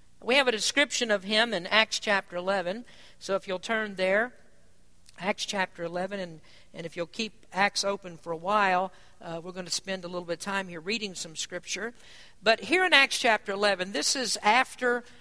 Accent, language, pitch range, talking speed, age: American, English, 185-230 Hz, 200 wpm, 60-79